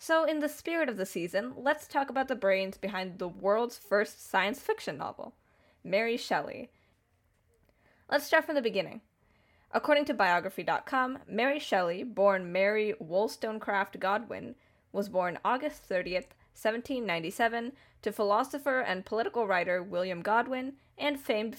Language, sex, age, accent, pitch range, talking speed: English, female, 10-29, American, 185-255 Hz, 135 wpm